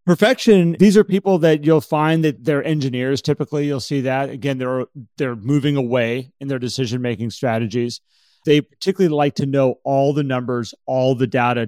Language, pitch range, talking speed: English, 120-150 Hz, 175 wpm